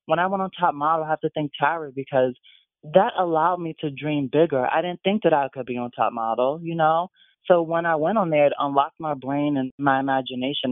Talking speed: 240 wpm